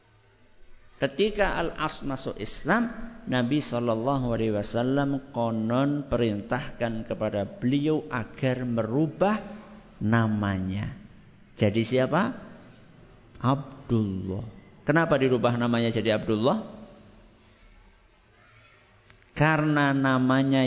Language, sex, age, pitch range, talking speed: Malay, male, 50-69, 110-140 Hz, 70 wpm